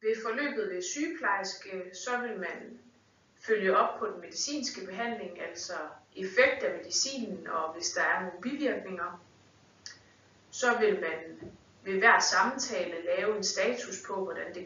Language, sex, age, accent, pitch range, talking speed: Danish, female, 30-49, native, 175-245 Hz, 145 wpm